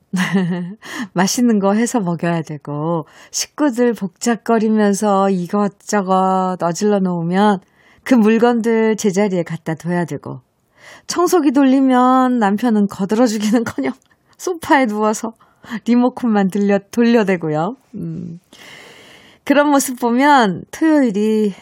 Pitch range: 175-235 Hz